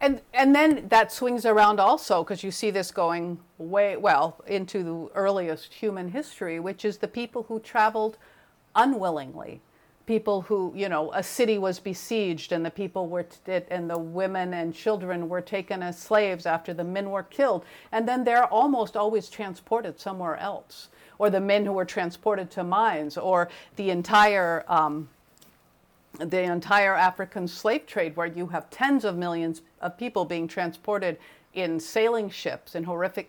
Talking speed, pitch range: 170 wpm, 180-220 Hz